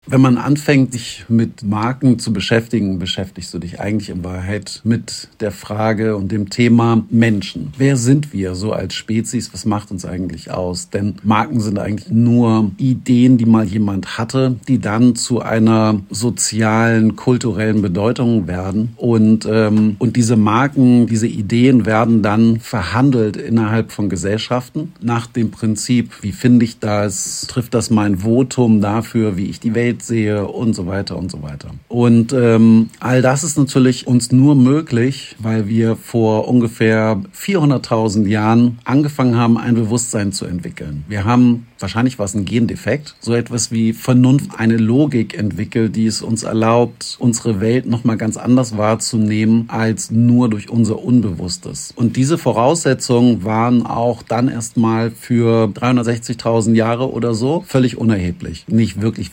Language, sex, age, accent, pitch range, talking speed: German, male, 50-69, German, 105-120 Hz, 150 wpm